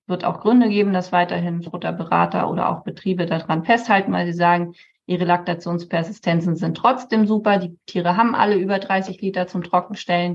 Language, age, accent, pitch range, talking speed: German, 20-39, German, 175-205 Hz, 175 wpm